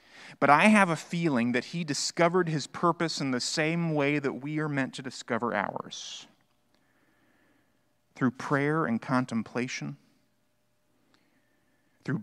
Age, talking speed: 30-49, 130 wpm